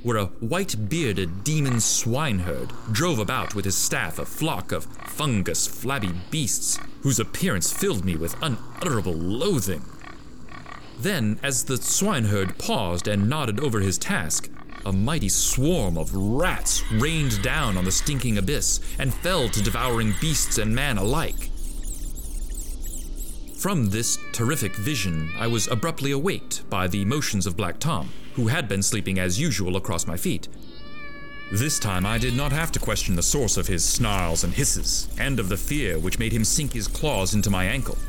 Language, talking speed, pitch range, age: English, 160 wpm, 95-125 Hz, 30-49